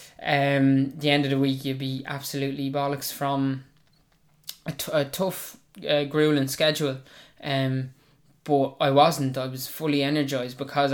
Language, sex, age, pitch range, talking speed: English, male, 20-39, 135-150 Hz, 150 wpm